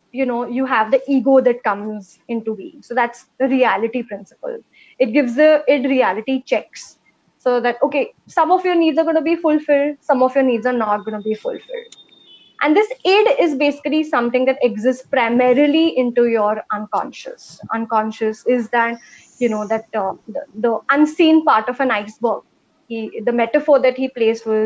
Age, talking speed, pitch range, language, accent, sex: 20-39, 180 wpm, 225-290 Hz, English, Indian, female